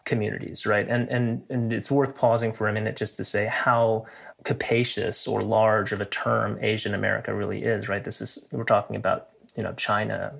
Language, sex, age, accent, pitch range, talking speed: English, male, 30-49, American, 110-135 Hz, 195 wpm